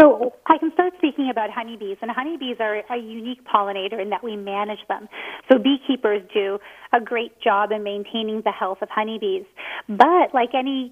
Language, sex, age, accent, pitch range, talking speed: English, female, 30-49, American, 215-260 Hz, 180 wpm